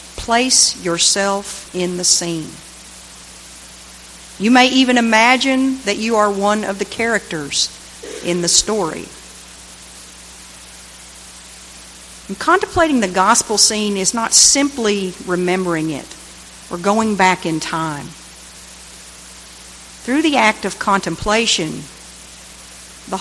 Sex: female